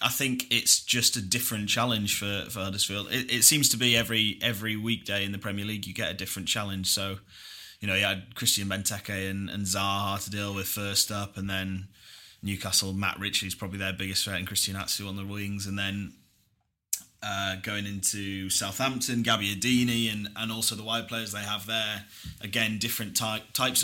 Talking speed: 195 wpm